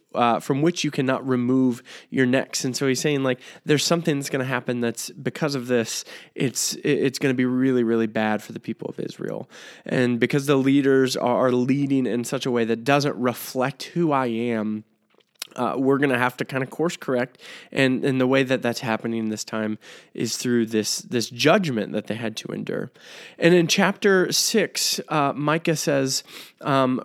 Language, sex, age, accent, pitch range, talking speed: English, male, 20-39, American, 120-145 Hz, 195 wpm